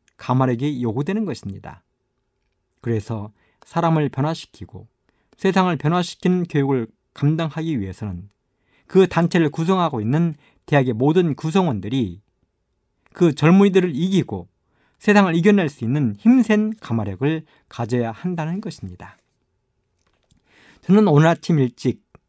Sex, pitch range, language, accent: male, 110-170 Hz, Korean, native